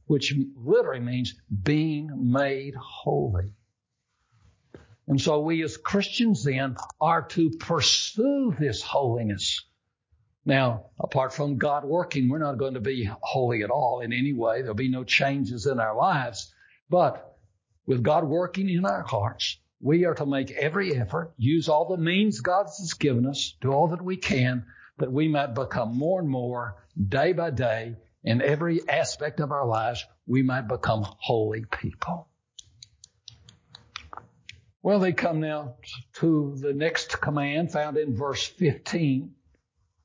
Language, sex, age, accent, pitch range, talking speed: English, male, 60-79, American, 115-160 Hz, 150 wpm